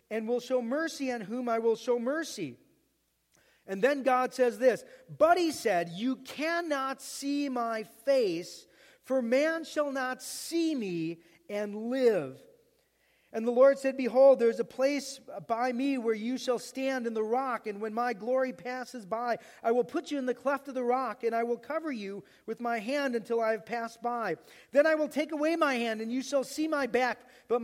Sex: male